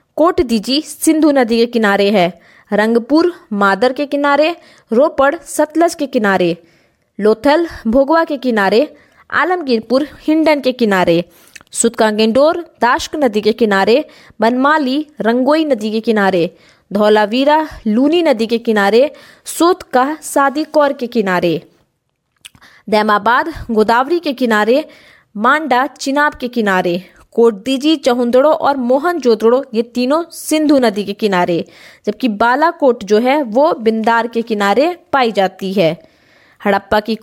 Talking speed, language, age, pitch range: 95 wpm, Hindi, 20-39, 215-290 Hz